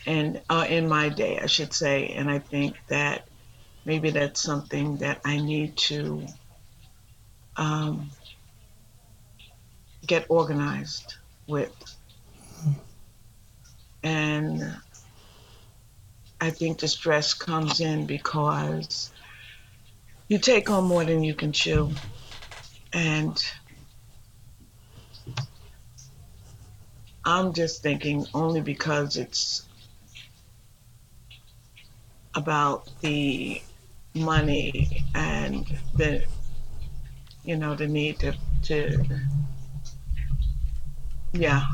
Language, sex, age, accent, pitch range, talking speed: English, female, 60-79, American, 115-150 Hz, 85 wpm